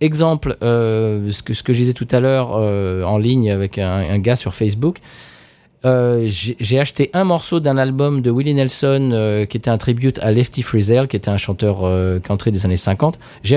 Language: French